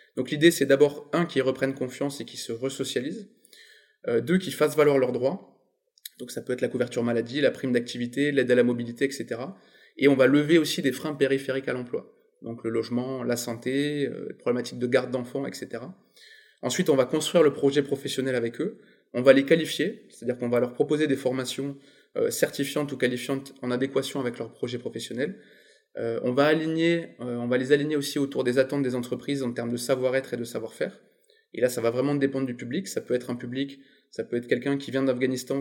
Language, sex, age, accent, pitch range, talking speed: French, male, 20-39, French, 125-140 Hz, 215 wpm